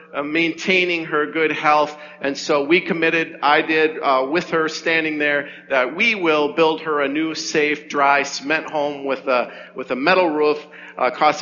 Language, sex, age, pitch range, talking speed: English, male, 50-69, 140-160 Hz, 185 wpm